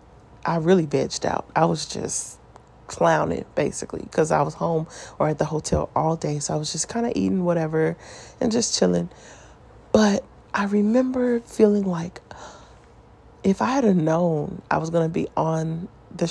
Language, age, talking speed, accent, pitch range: English, 30-49, 170 wpm, American, 145-170 Hz